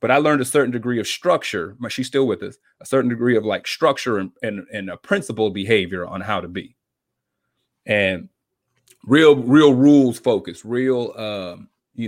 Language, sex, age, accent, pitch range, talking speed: English, male, 30-49, American, 100-125 Hz, 180 wpm